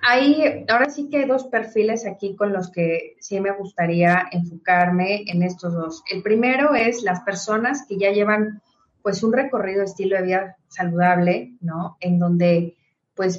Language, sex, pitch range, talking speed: Spanish, female, 180-225 Hz, 170 wpm